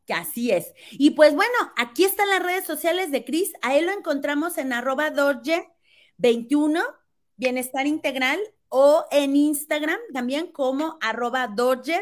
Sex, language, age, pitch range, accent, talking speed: female, Spanish, 30-49, 215-310 Hz, Mexican, 140 wpm